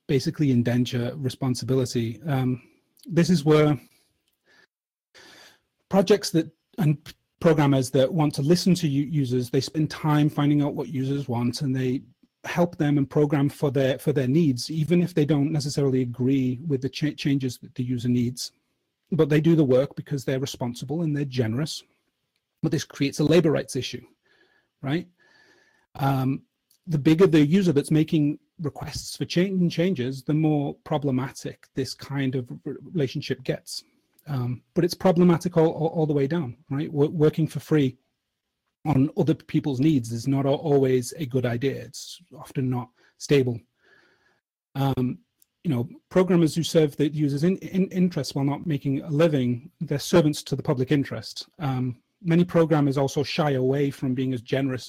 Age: 30-49